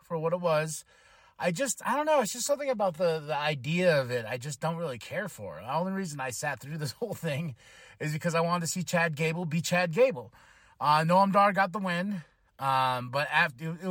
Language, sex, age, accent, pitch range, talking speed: English, male, 30-49, American, 140-205 Hz, 230 wpm